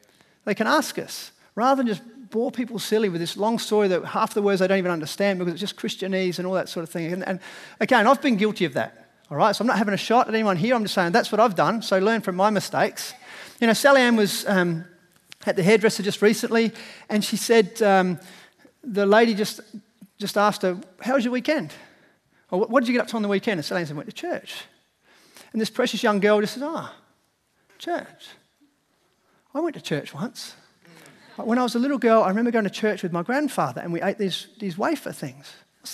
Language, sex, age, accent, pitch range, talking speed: English, male, 40-59, Australian, 190-235 Hz, 235 wpm